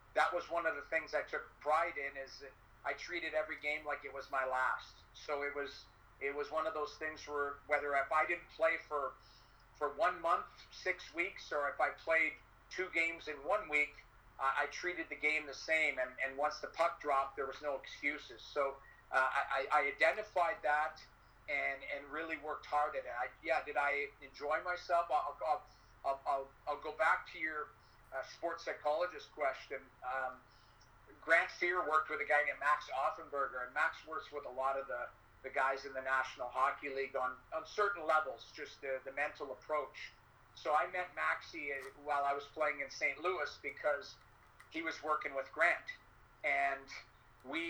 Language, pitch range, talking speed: English, 135-160 Hz, 190 wpm